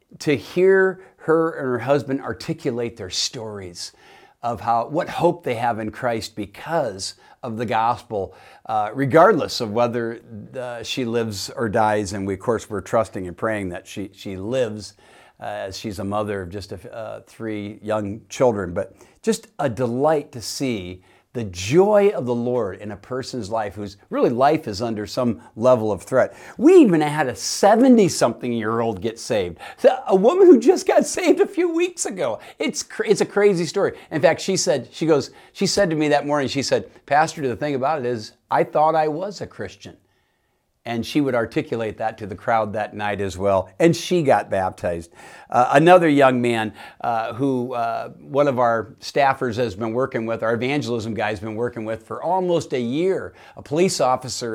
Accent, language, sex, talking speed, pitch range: American, English, male, 190 wpm, 105-155 Hz